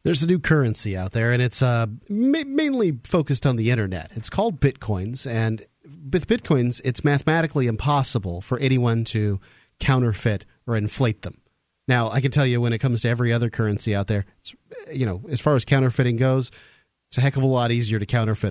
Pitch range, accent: 105-135 Hz, American